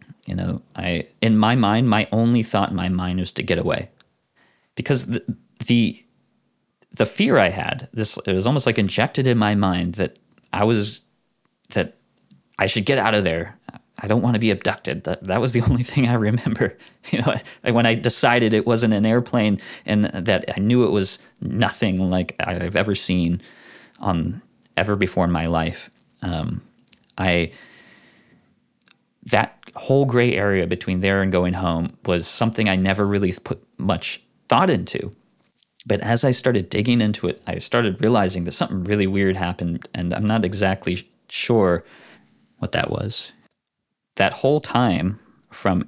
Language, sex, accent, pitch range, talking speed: English, male, American, 90-115 Hz, 170 wpm